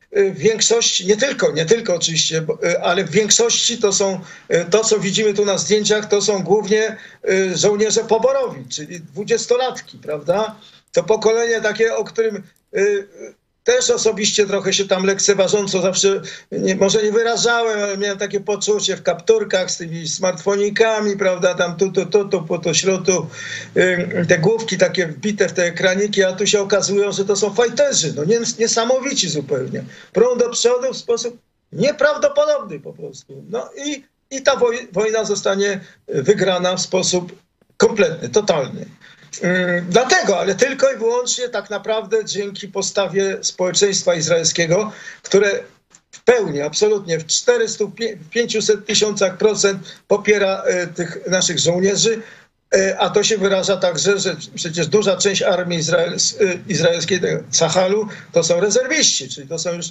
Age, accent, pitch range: 50-69, native, 180-225 Hz